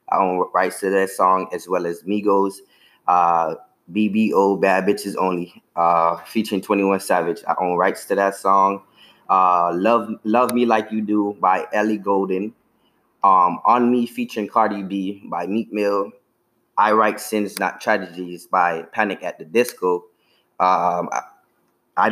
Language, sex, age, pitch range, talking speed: English, male, 20-39, 90-110 Hz, 150 wpm